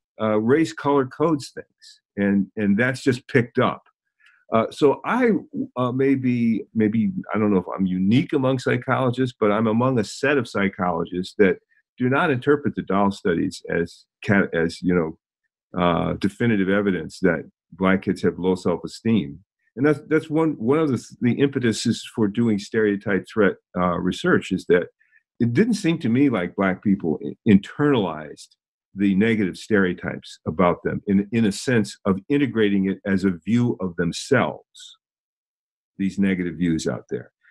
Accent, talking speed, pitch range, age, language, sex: American, 160 wpm, 100-145 Hz, 50-69, English, male